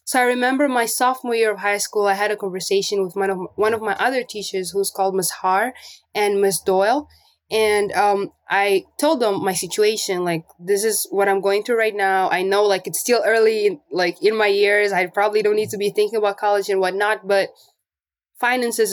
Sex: female